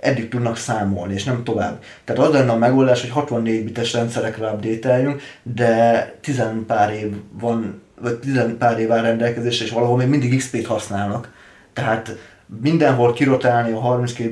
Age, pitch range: 20-39, 110-125 Hz